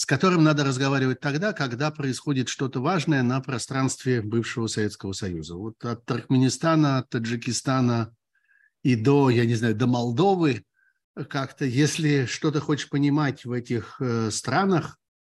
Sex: male